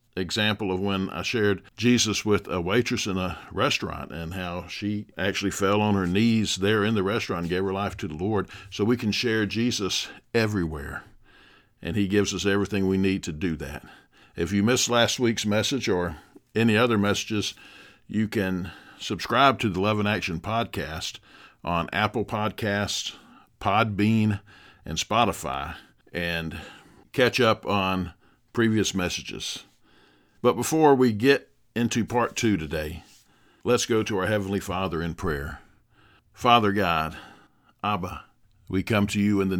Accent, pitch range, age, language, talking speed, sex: American, 95-110 Hz, 50-69, English, 155 wpm, male